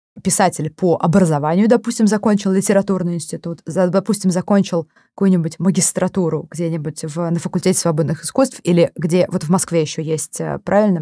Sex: female